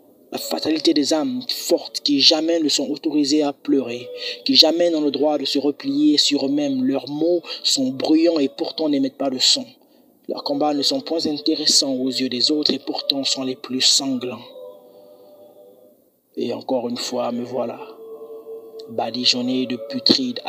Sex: male